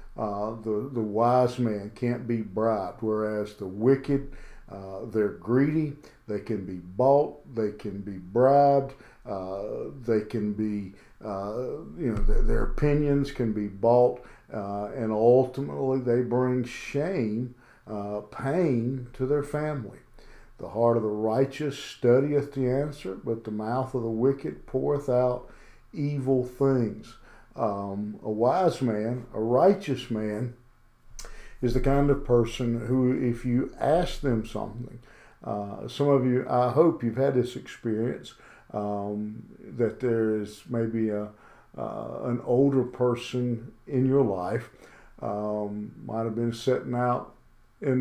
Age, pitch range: 50-69, 110-130 Hz